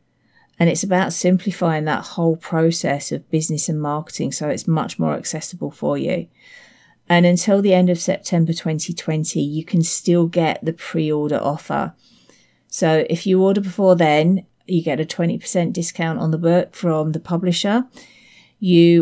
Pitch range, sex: 155-175 Hz, female